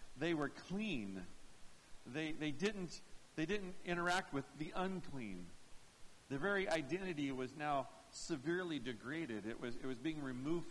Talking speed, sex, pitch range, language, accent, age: 140 wpm, male, 140-205 Hz, English, American, 50-69